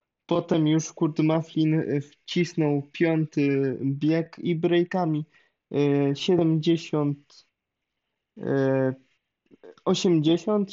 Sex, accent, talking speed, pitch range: male, native, 60 wpm, 140-165 Hz